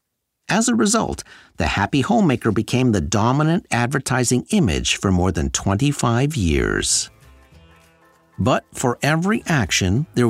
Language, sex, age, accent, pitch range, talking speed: English, male, 50-69, American, 95-150 Hz, 120 wpm